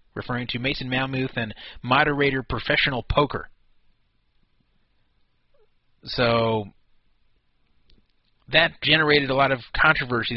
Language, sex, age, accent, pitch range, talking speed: English, male, 30-49, American, 110-150 Hz, 85 wpm